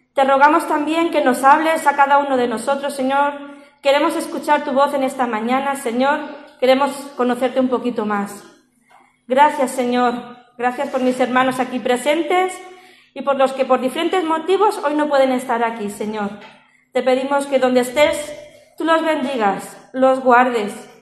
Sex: female